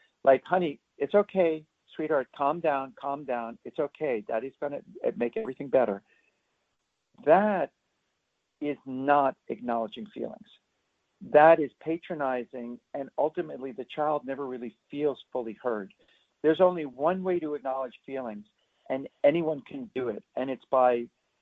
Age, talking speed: 50-69, 135 wpm